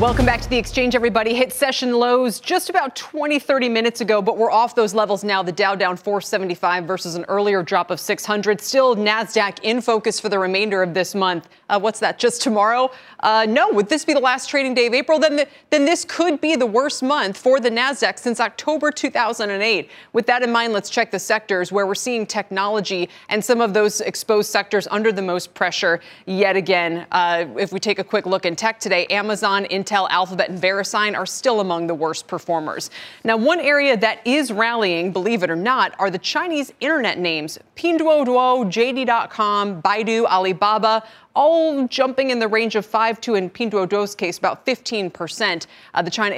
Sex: female